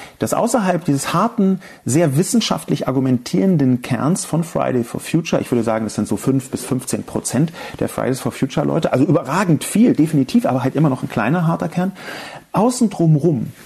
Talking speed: 180 wpm